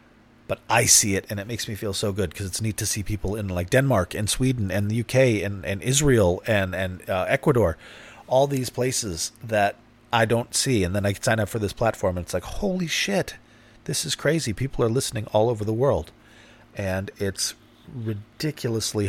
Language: English